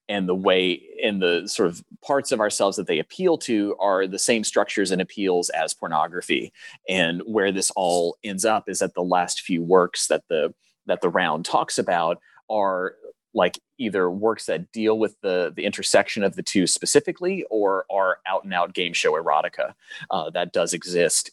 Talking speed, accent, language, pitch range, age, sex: 190 wpm, American, English, 90-125 Hz, 30-49, male